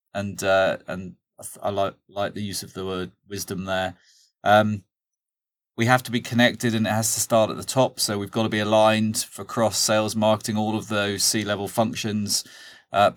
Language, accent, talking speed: English, British, 205 wpm